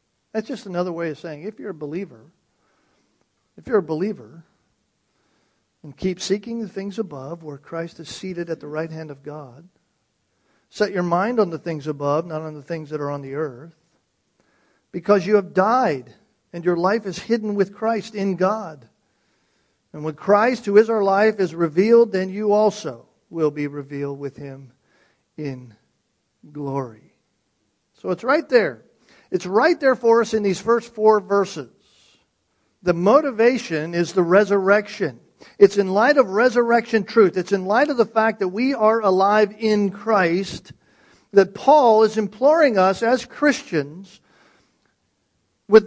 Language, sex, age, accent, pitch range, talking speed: English, male, 50-69, American, 165-225 Hz, 160 wpm